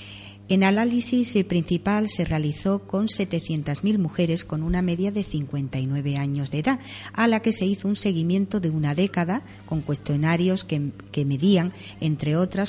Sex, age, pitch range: female, 40-59, 145-195 Hz